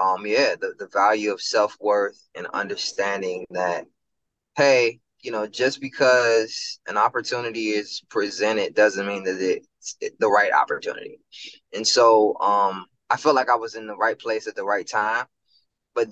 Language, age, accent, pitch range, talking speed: English, 20-39, American, 100-130 Hz, 160 wpm